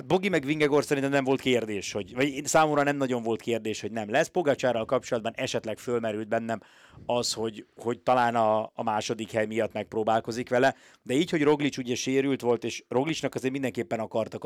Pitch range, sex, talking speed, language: 110-130 Hz, male, 190 wpm, Hungarian